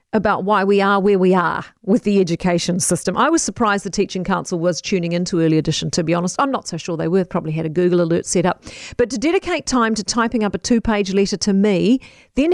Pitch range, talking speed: 185-250 Hz, 255 wpm